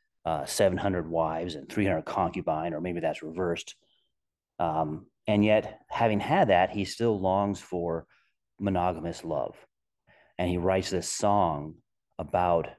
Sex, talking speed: male, 130 wpm